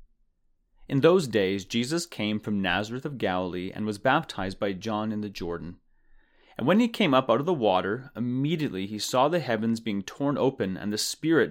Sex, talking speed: male, 195 wpm